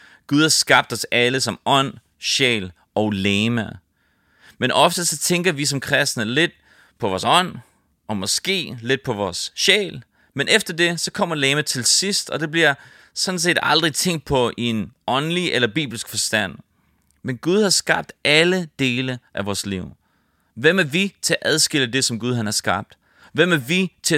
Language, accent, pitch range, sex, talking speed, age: English, Danish, 115-155 Hz, male, 185 wpm, 30-49